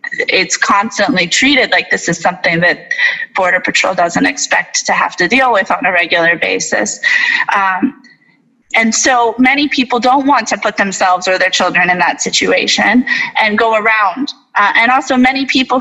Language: English